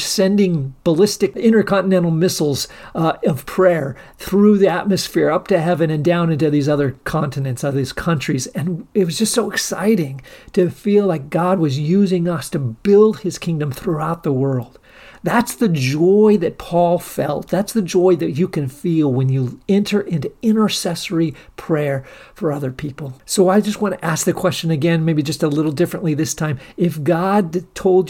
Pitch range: 145-185 Hz